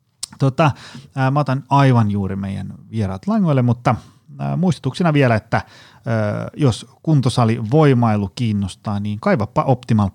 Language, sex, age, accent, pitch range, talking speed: Finnish, male, 30-49, native, 100-130 Hz, 110 wpm